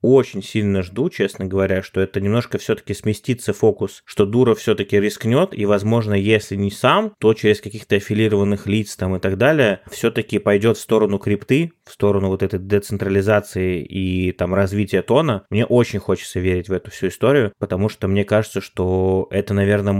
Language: Russian